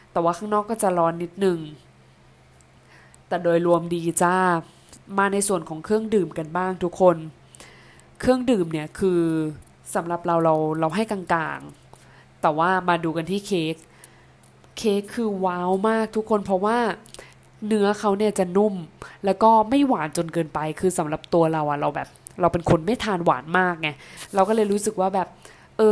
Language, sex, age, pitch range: Thai, female, 20-39, 165-200 Hz